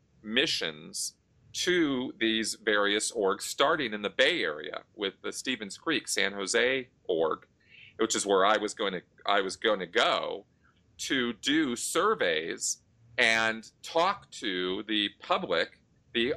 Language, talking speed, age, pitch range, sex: English, 140 wpm, 40-59, 105-135 Hz, male